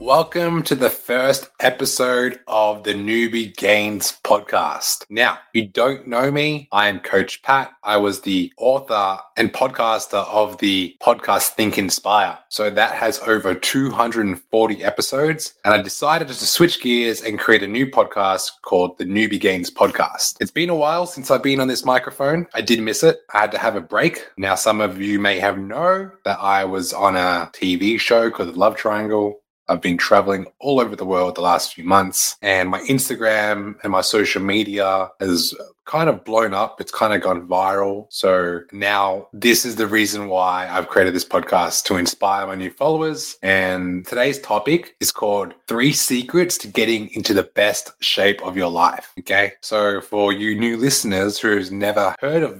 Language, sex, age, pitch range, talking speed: English, male, 20-39, 100-125 Hz, 180 wpm